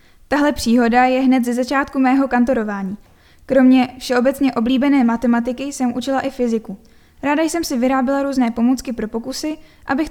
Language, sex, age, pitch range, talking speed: Czech, female, 10-29, 230-275 Hz, 150 wpm